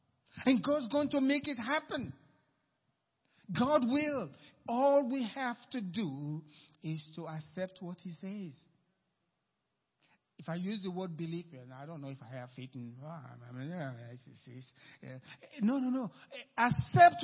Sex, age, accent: male, 50-69, Nigerian